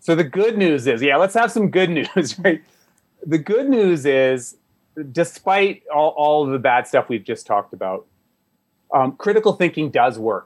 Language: English